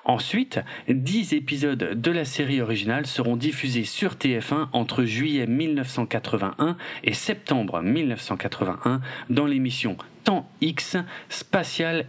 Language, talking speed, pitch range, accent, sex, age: French, 110 wpm, 120-155 Hz, French, male, 40-59